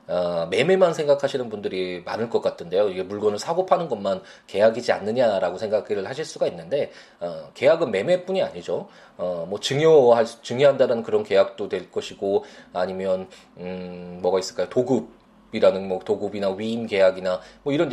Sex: male